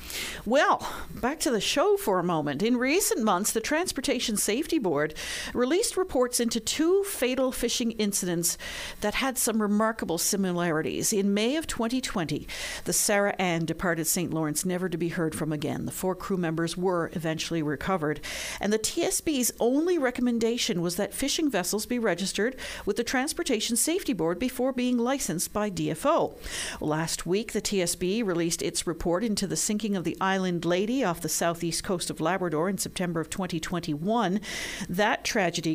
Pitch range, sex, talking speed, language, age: 170-235 Hz, female, 165 wpm, English, 50-69